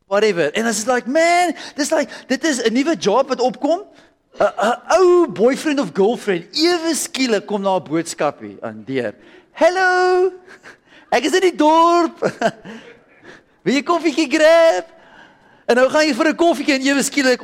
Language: English